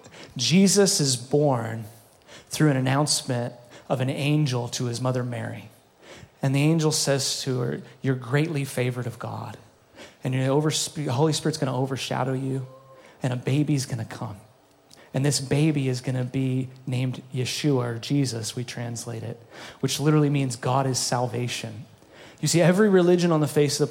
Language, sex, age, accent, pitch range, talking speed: English, male, 30-49, American, 120-145 Hz, 175 wpm